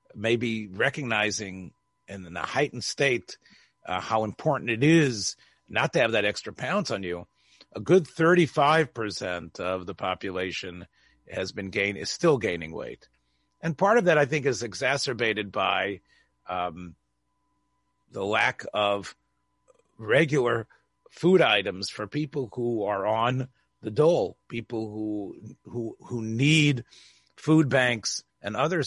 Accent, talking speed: American, 135 wpm